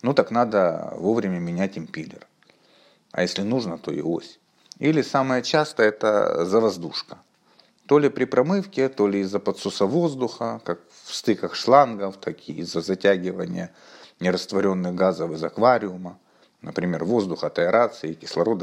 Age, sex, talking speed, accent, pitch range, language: 50-69, male, 145 wpm, native, 90-125 Hz, Russian